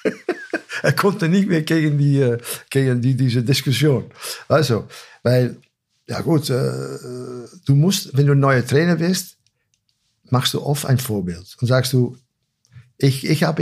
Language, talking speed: German, 150 wpm